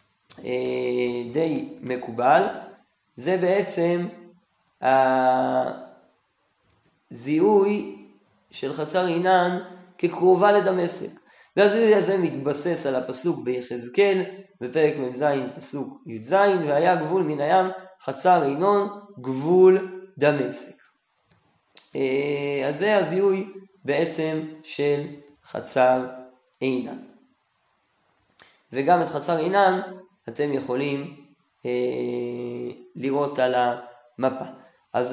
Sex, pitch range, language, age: male, 130-180 Hz, Hebrew, 20-39